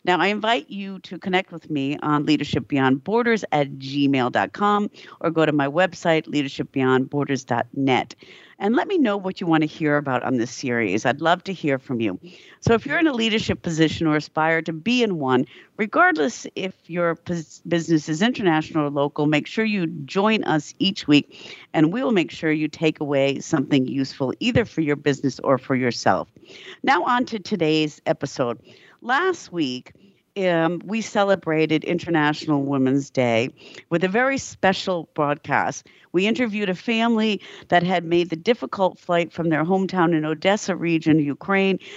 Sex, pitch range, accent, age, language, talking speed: female, 145-195 Hz, American, 50-69, English, 165 wpm